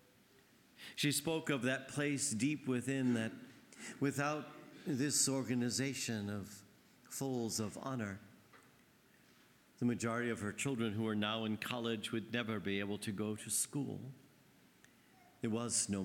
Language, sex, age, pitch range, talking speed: English, male, 50-69, 100-125 Hz, 135 wpm